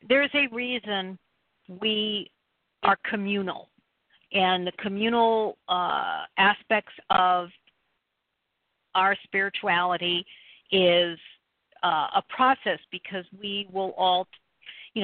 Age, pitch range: 50-69, 175-210 Hz